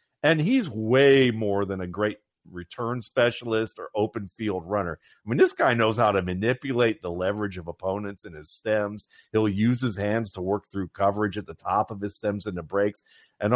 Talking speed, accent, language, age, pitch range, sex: 205 wpm, American, English, 50-69, 100-135 Hz, male